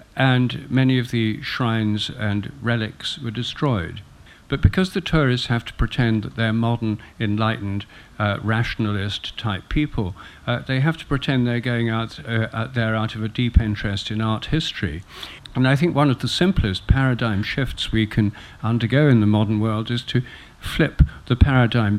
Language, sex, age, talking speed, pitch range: English, male, 50-69, 170 wpm, 105-130 Hz